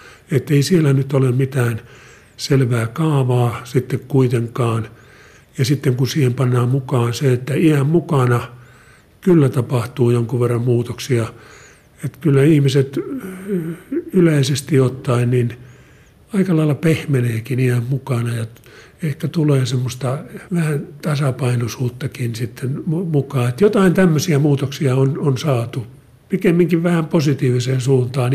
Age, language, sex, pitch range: 50-69, Finnish, male, 125-150 Hz